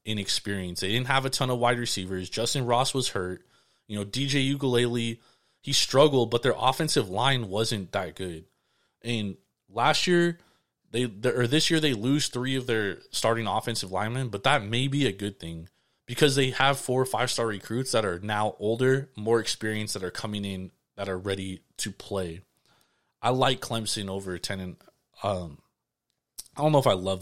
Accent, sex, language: American, male, English